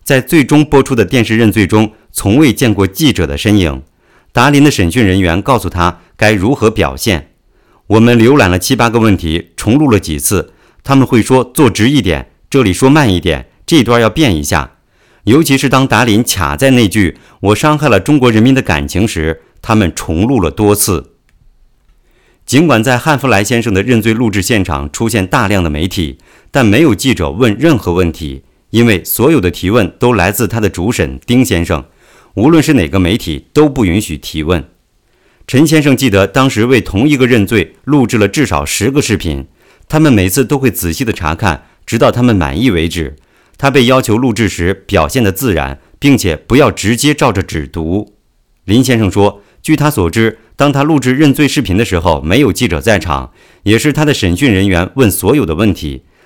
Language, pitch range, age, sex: English, 85-130 Hz, 50-69, male